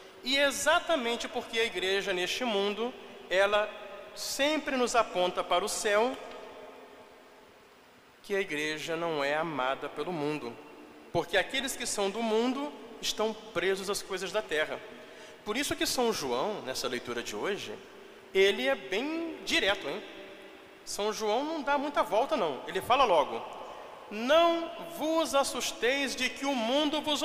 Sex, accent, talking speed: male, Brazilian, 145 wpm